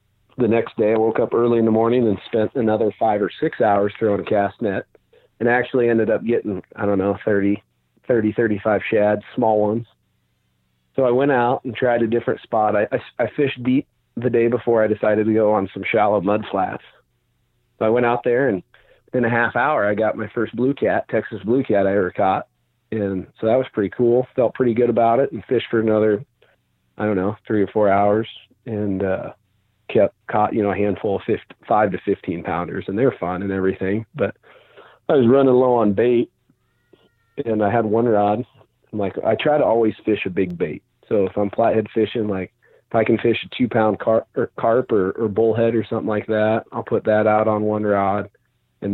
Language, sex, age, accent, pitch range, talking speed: English, male, 40-59, American, 100-115 Hz, 215 wpm